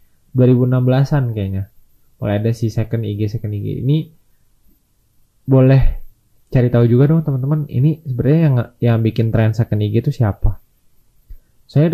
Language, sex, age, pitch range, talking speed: Indonesian, male, 20-39, 110-140 Hz, 135 wpm